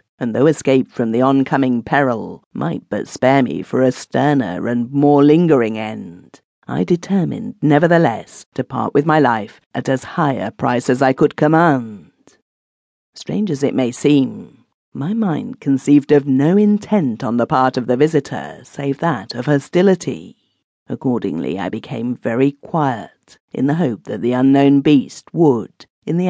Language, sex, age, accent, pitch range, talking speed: English, female, 50-69, British, 130-155 Hz, 160 wpm